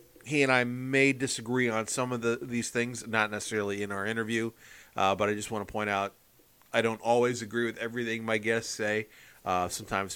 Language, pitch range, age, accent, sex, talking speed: English, 100-120 Hz, 40-59, American, male, 205 wpm